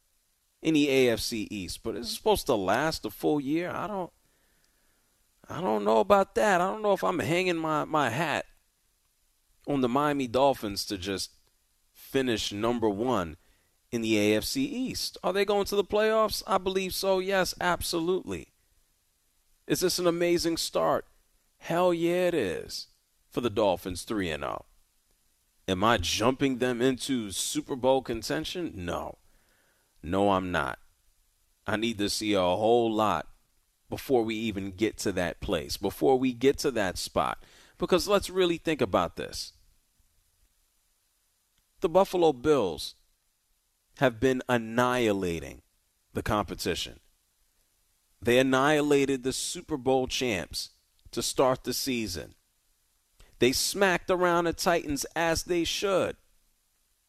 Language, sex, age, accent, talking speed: English, male, 40-59, American, 140 wpm